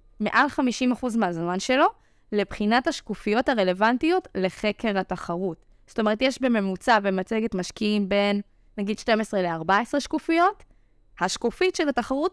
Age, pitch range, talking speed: 20-39, 190-270 Hz, 110 wpm